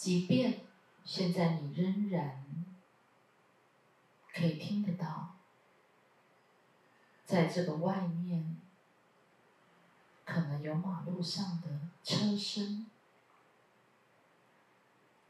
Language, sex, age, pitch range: Chinese, female, 40-59, 160-195 Hz